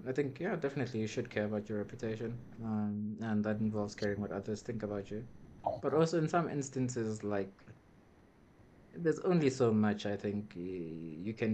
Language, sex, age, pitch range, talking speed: English, male, 20-39, 105-135 Hz, 175 wpm